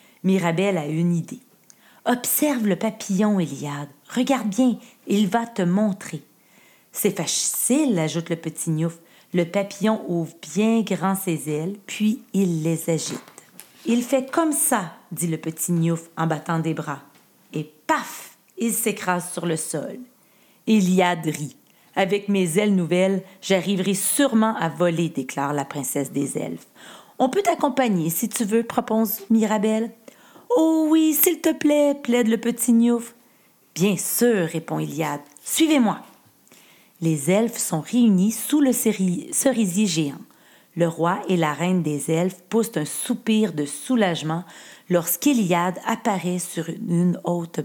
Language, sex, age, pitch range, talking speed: French, female, 40-59, 165-230 Hz, 145 wpm